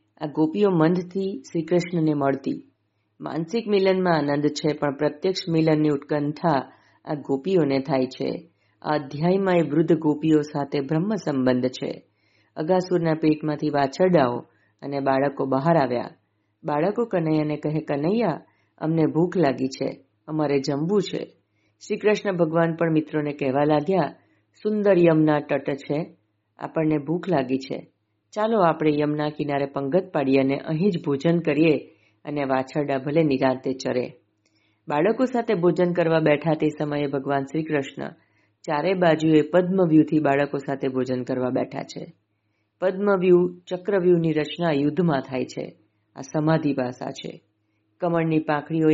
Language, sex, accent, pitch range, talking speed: Gujarati, female, native, 135-170 Hz, 125 wpm